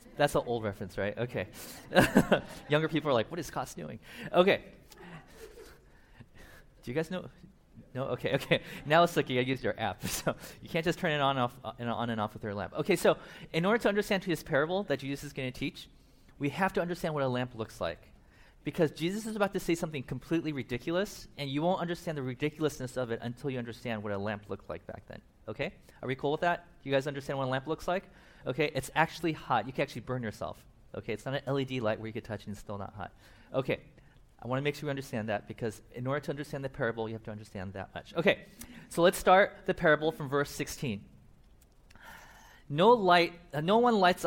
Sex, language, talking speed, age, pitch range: male, English, 230 wpm, 30-49, 120-165 Hz